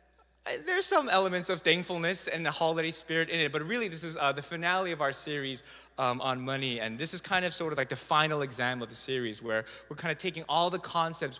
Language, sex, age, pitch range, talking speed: English, male, 20-39, 115-150 Hz, 240 wpm